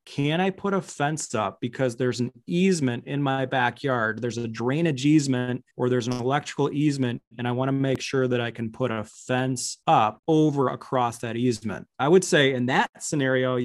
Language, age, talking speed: English, 30-49, 195 wpm